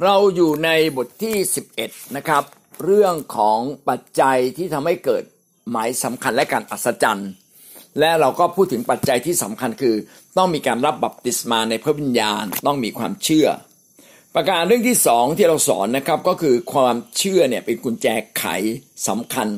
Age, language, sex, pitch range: 60-79, Thai, male, 115-165 Hz